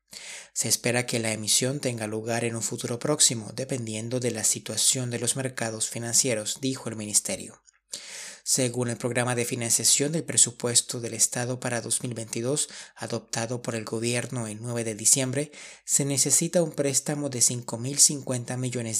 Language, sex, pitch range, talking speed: Spanish, male, 115-135 Hz, 150 wpm